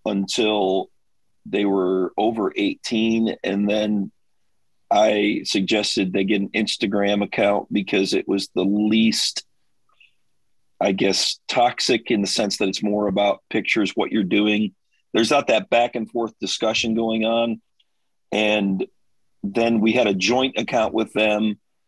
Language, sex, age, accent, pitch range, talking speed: English, male, 40-59, American, 100-110 Hz, 140 wpm